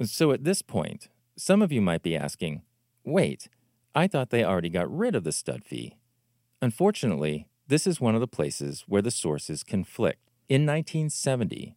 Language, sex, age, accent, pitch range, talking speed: English, male, 40-59, American, 100-135 Hz, 175 wpm